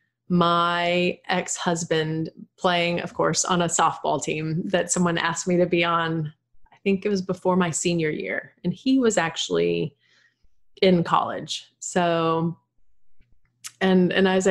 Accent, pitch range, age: American, 175-215 Hz, 30-49